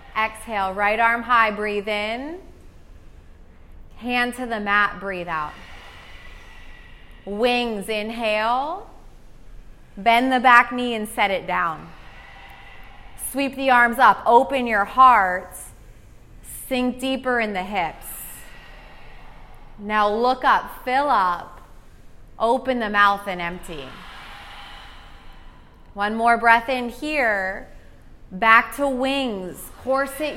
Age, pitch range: 30-49, 190-245 Hz